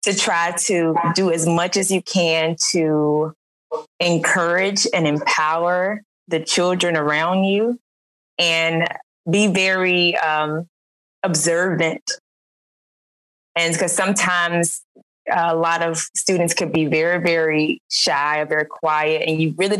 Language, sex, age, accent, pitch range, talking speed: English, female, 20-39, American, 155-180 Hz, 120 wpm